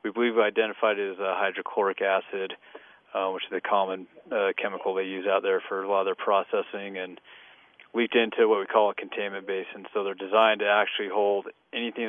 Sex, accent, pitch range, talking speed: male, American, 100-115 Hz, 210 wpm